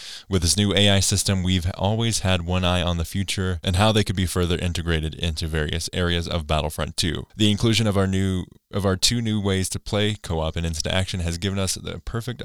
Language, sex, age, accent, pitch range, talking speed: English, male, 20-39, American, 80-100 Hz, 220 wpm